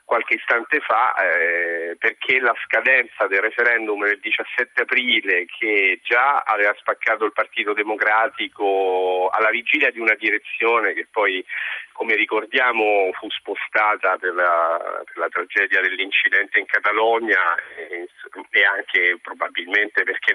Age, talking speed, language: 40-59, 125 wpm, Italian